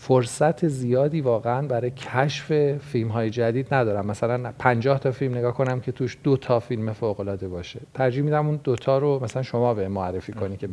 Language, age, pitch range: Persian, 40-59, 115-140 Hz